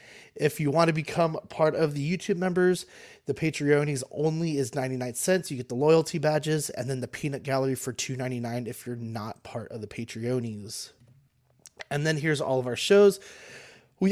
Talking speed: 185 wpm